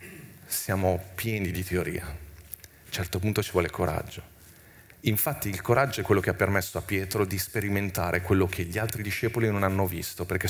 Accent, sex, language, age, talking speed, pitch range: native, male, Italian, 40-59, 185 wpm, 90-105 Hz